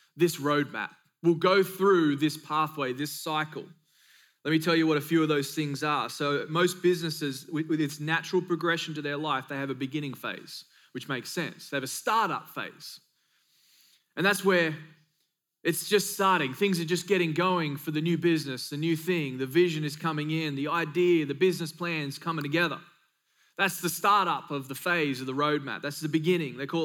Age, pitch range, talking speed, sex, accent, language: 20-39, 150-180 Hz, 195 wpm, male, Australian, English